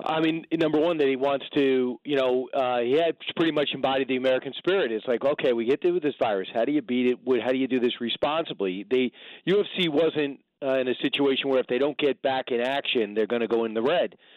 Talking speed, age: 255 wpm, 40-59